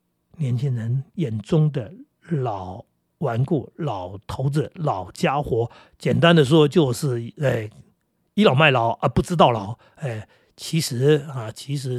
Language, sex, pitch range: Chinese, male, 120-150 Hz